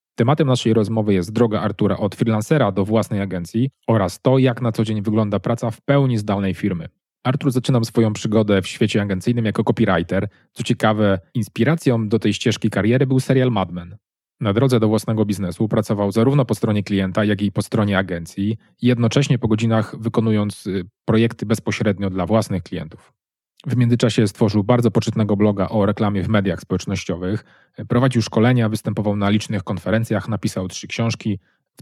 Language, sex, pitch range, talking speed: Polish, male, 95-115 Hz, 165 wpm